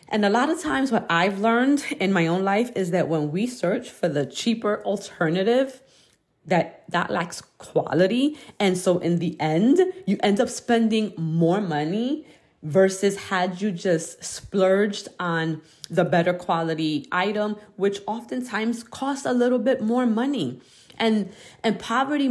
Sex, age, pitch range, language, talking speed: female, 30-49, 180-240 Hz, English, 155 wpm